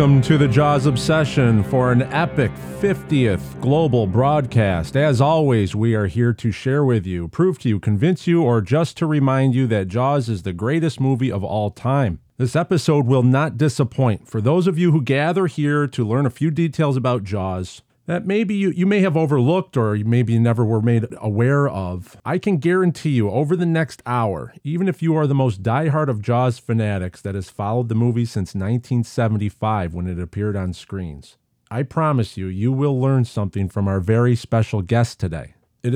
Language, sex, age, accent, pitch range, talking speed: English, male, 40-59, American, 110-150 Hz, 195 wpm